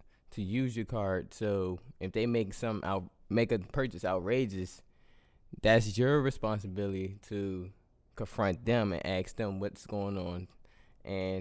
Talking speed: 140 wpm